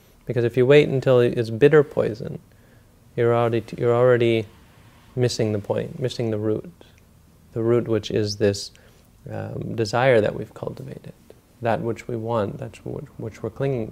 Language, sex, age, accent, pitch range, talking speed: English, male, 30-49, American, 110-120 Hz, 160 wpm